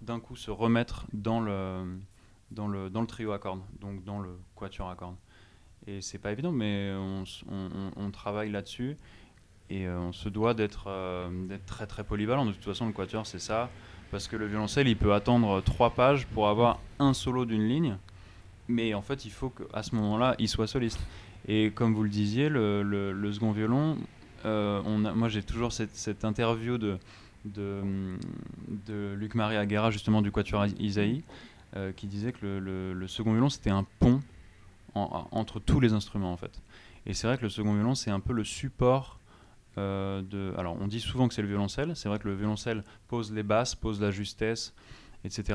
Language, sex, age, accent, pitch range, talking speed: French, male, 20-39, French, 100-115 Hz, 205 wpm